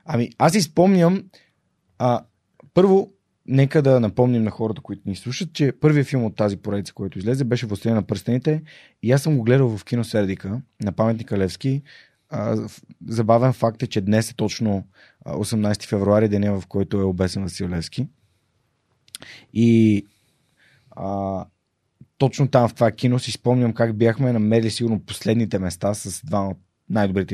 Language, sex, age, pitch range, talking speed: Bulgarian, male, 30-49, 105-130 Hz, 155 wpm